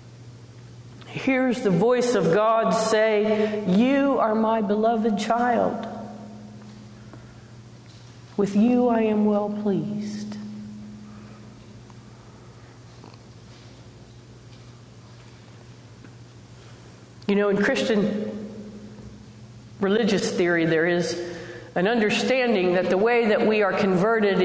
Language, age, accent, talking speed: English, 50-69, American, 85 wpm